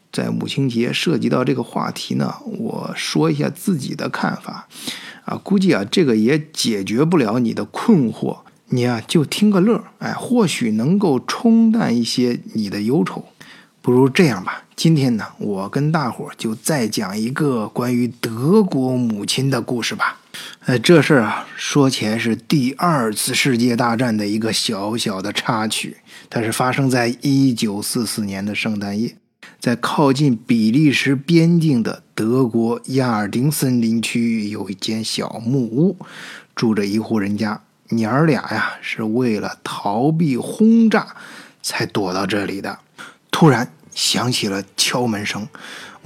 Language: Chinese